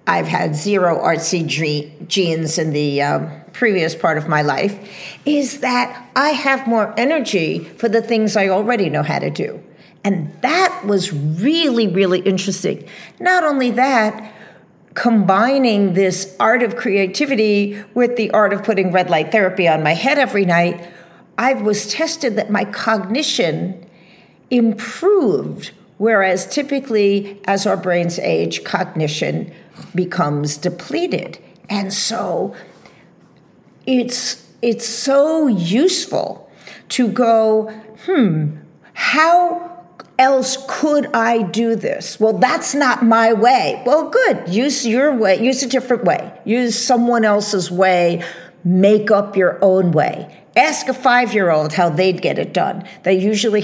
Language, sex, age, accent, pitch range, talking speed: English, female, 50-69, American, 180-245 Hz, 135 wpm